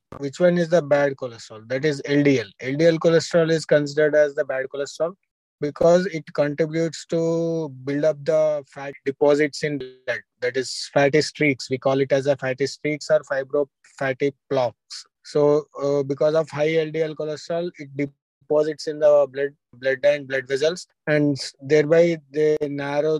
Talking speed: 165 wpm